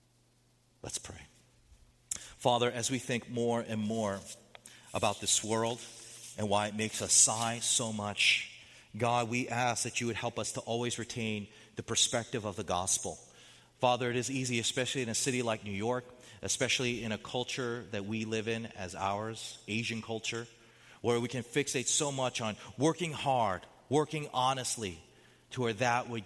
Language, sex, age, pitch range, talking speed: English, male, 40-59, 105-120 Hz, 170 wpm